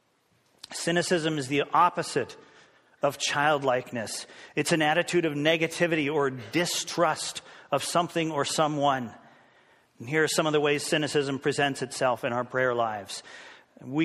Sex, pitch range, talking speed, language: male, 150-195 Hz, 135 wpm, English